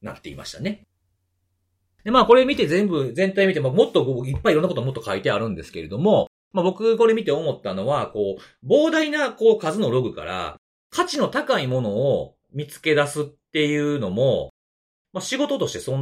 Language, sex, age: Japanese, male, 40-59